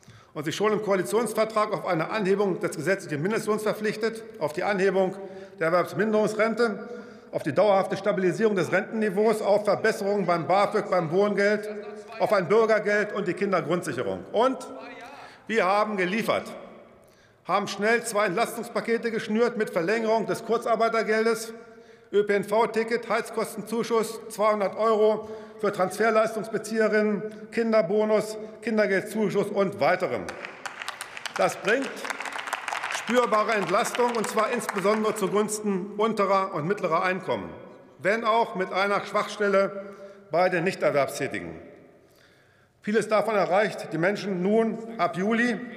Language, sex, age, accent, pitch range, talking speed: German, male, 50-69, German, 190-220 Hz, 115 wpm